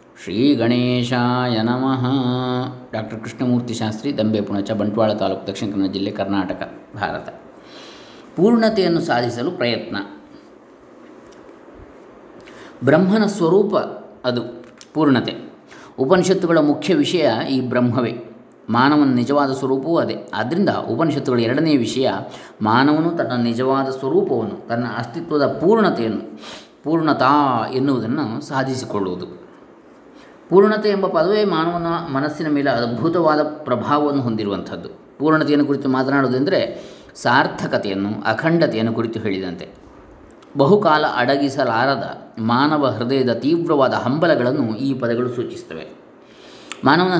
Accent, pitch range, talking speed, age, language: native, 115-155 Hz, 90 wpm, 20-39, Kannada